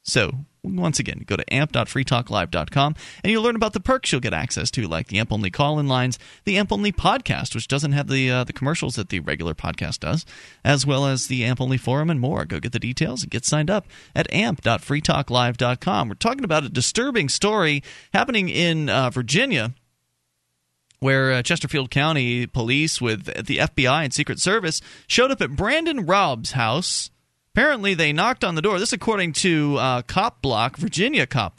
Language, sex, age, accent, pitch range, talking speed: English, male, 30-49, American, 120-170 Hz, 185 wpm